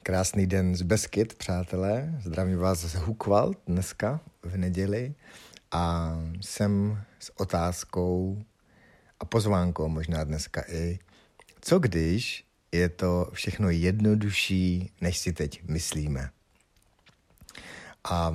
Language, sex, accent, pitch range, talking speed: Czech, male, native, 85-100 Hz, 105 wpm